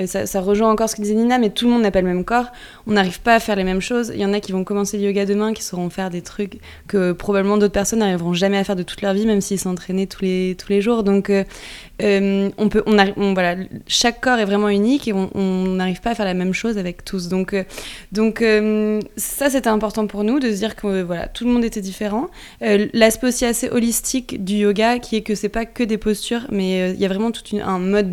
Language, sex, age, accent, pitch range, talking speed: French, female, 20-39, French, 190-220 Hz, 275 wpm